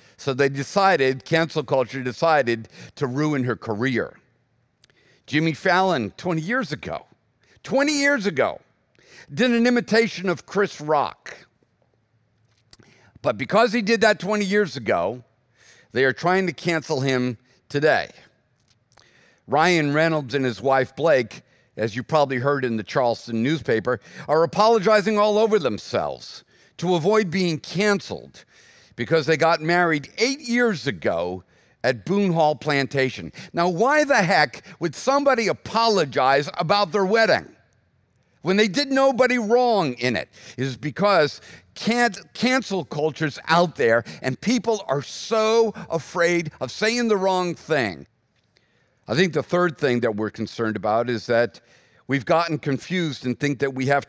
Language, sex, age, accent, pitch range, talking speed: English, male, 50-69, American, 130-205 Hz, 140 wpm